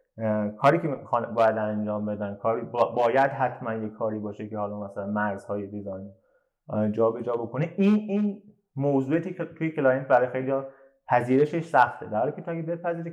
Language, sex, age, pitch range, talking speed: Persian, male, 30-49, 115-155 Hz, 160 wpm